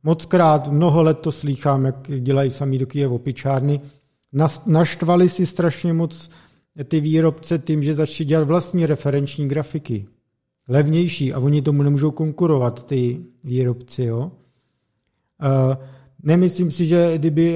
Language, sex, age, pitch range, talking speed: Czech, male, 50-69, 140-165 Hz, 125 wpm